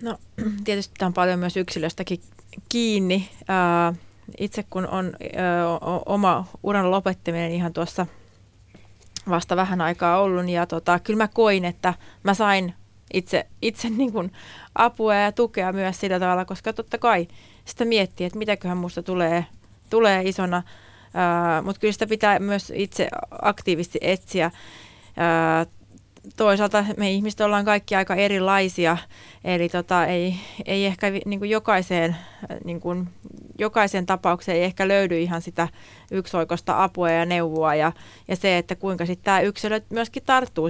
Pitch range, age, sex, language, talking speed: 170-205 Hz, 30-49, female, Finnish, 135 wpm